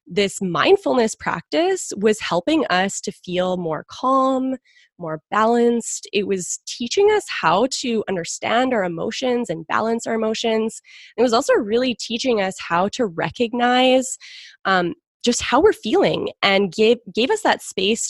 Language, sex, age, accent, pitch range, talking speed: English, female, 20-39, American, 180-240 Hz, 150 wpm